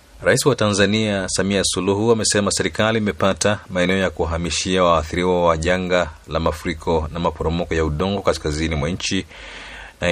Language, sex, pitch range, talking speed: Swahili, male, 80-95 Hz, 140 wpm